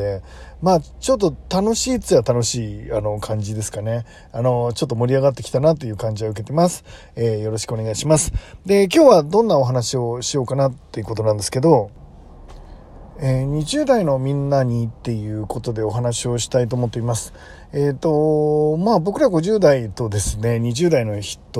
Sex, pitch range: male, 115-155 Hz